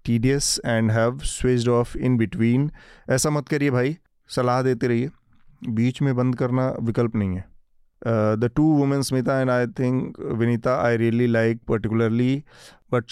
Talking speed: 165 wpm